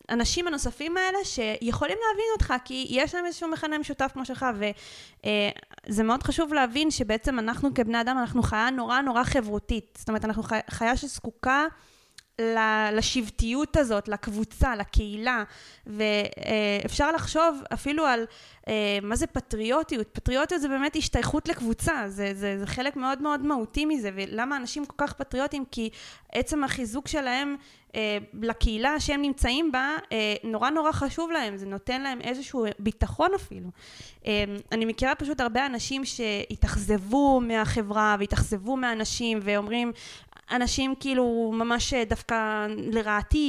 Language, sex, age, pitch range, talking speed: Hebrew, female, 20-39, 220-275 Hz, 130 wpm